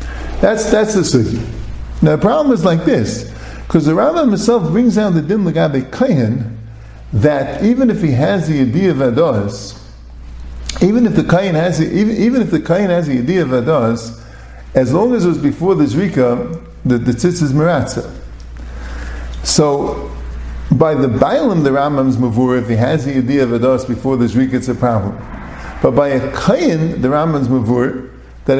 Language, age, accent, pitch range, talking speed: English, 50-69, American, 115-180 Hz, 175 wpm